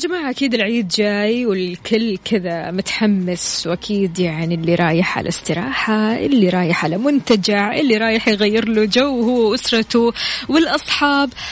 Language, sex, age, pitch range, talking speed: Arabic, female, 20-39, 180-235 Hz, 130 wpm